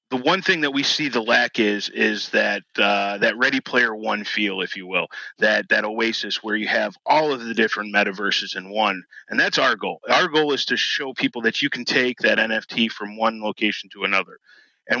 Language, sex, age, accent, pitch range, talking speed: English, male, 30-49, American, 105-125 Hz, 220 wpm